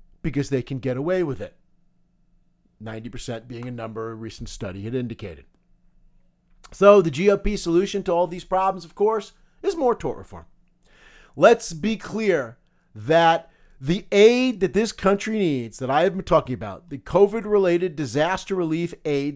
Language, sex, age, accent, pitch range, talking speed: English, male, 40-59, American, 150-200 Hz, 160 wpm